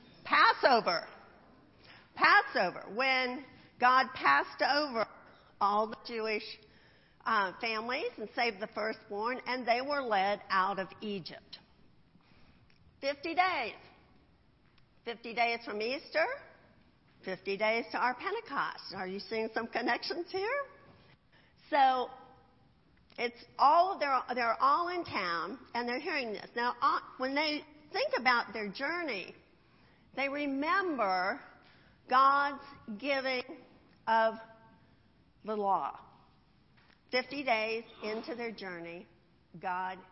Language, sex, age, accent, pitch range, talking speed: English, female, 50-69, American, 220-290 Hz, 110 wpm